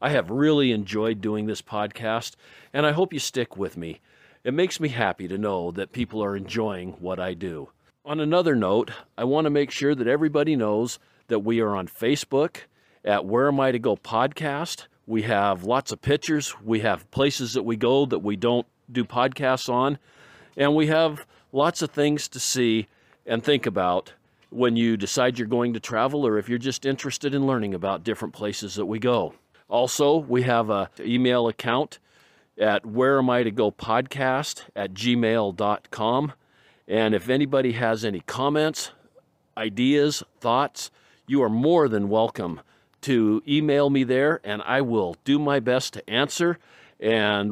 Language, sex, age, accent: English, male, 50-69, American